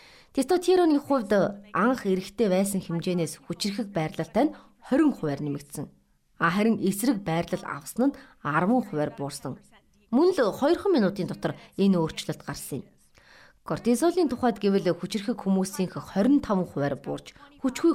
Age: 30-49